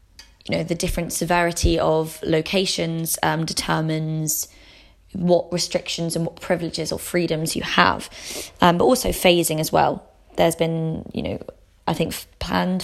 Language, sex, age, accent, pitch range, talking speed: English, female, 20-39, British, 160-180 Hz, 145 wpm